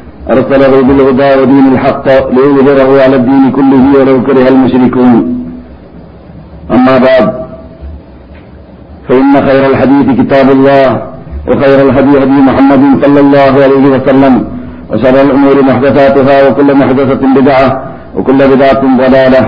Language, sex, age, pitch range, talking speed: Malayalam, male, 50-69, 130-140 Hz, 110 wpm